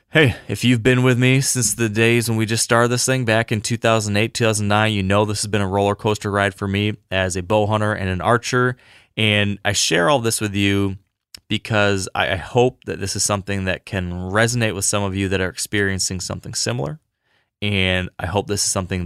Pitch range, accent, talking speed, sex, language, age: 95-110 Hz, American, 215 wpm, male, English, 20-39